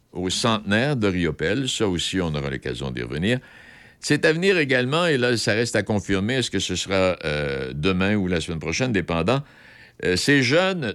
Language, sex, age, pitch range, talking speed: French, male, 60-79, 80-125 Hz, 190 wpm